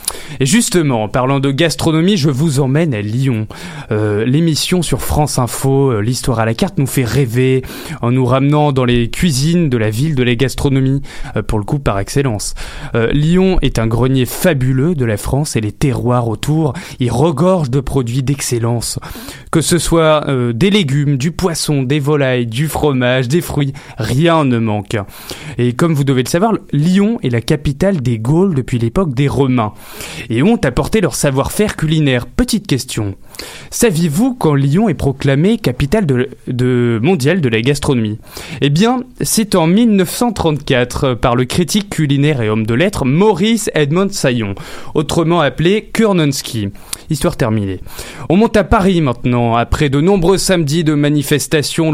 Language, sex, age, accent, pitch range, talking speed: French, male, 20-39, French, 125-165 Hz, 165 wpm